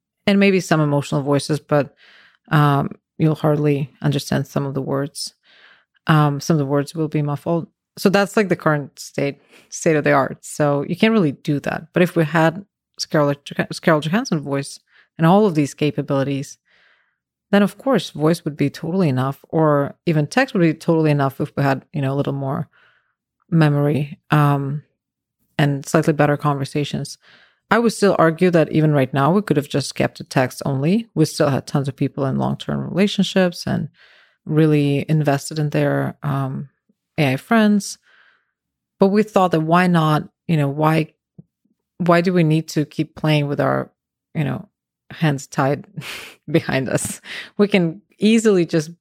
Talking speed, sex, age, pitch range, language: 175 wpm, female, 30-49, 145-175 Hz, English